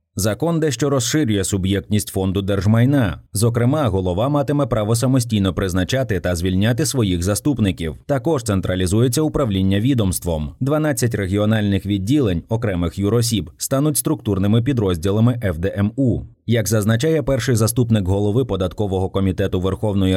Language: Ukrainian